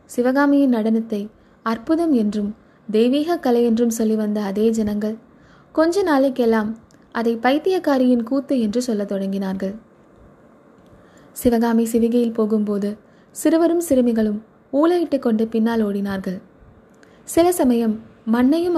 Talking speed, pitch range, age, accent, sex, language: 100 wpm, 210-270 Hz, 20-39, native, female, Tamil